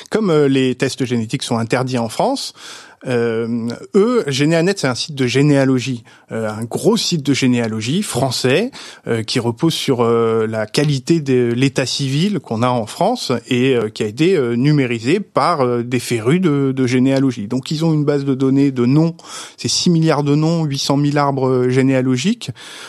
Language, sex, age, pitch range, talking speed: French, male, 20-39, 125-165 Hz, 180 wpm